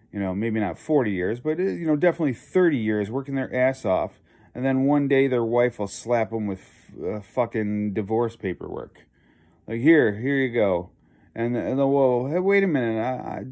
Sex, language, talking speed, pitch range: male, English, 200 wpm, 100-130 Hz